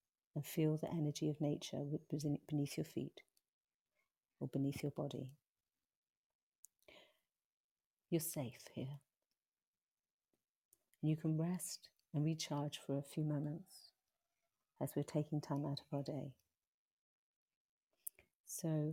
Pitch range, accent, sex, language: 145-175 Hz, British, female, English